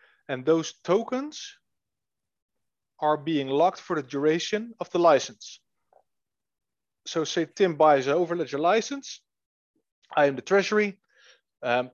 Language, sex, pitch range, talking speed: English, male, 145-200 Hz, 120 wpm